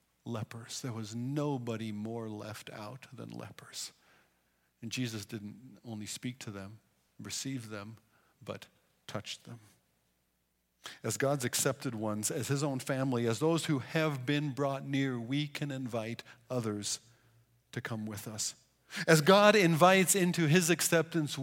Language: English